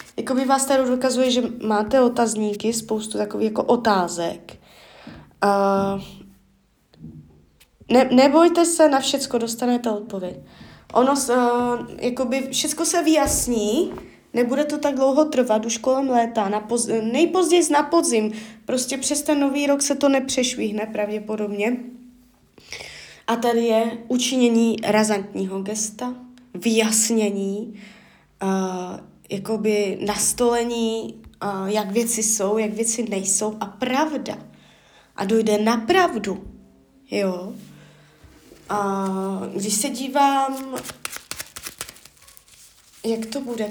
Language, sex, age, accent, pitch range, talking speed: Czech, female, 20-39, native, 205-255 Hz, 105 wpm